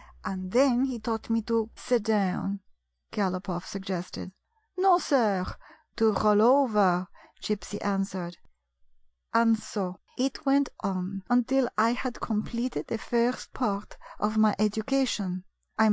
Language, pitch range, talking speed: English, 195-240 Hz, 125 wpm